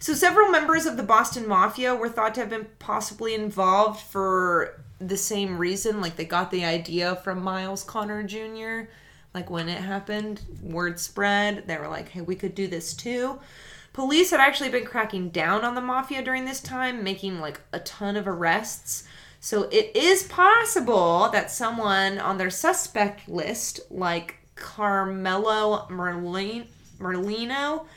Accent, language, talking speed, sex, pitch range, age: American, English, 155 wpm, female, 180-230 Hz, 20-39